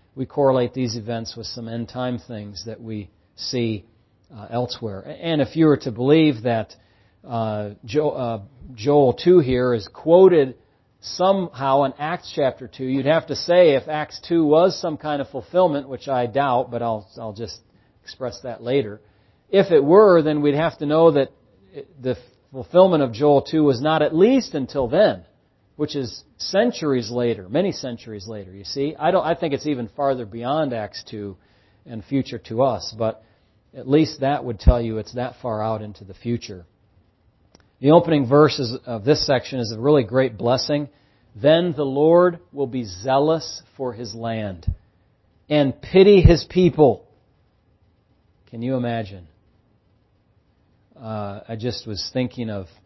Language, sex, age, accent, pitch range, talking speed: English, male, 40-59, American, 110-145 Hz, 165 wpm